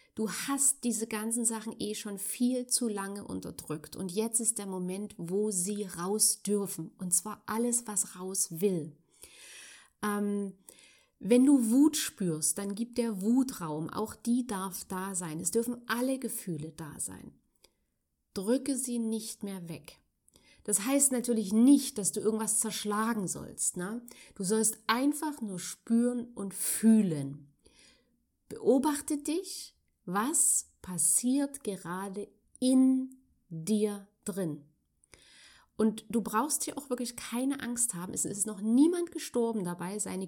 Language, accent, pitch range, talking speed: German, German, 185-245 Hz, 135 wpm